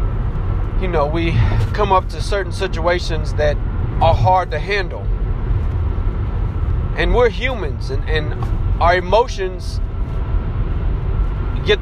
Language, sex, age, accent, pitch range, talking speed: English, male, 30-49, American, 90-110 Hz, 105 wpm